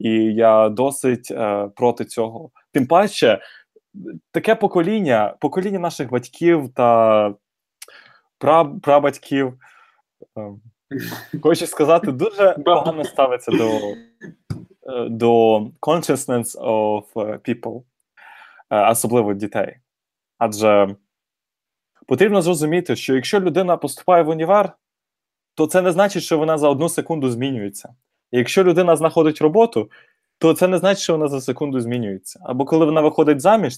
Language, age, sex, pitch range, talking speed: Ukrainian, 20-39, male, 115-160 Hz, 115 wpm